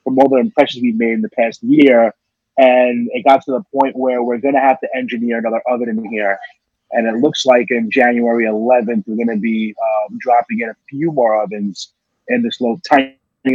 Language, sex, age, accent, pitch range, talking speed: English, male, 30-49, American, 120-140 Hz, 215 wpm